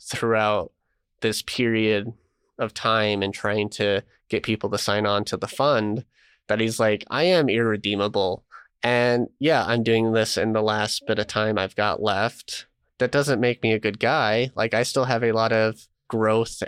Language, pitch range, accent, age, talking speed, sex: English, 110-125 Hz, American, 20-39, 185 wpm, male